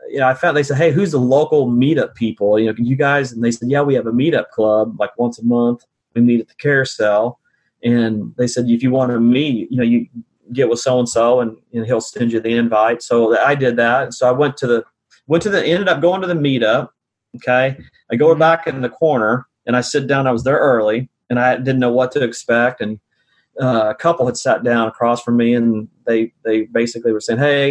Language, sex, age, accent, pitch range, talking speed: English, male, 30-49, American, 120-135 Hz, 245 wpm